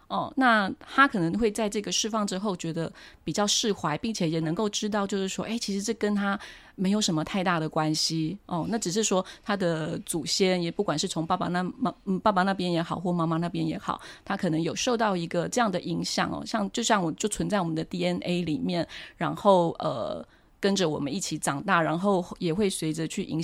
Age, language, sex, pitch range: 30-49, Chinese, female, 165-210 Hz